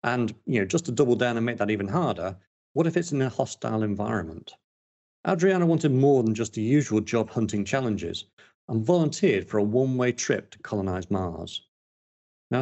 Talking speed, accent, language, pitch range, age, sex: 175 wpm, British, English, 100-145 Hz, 40-59, male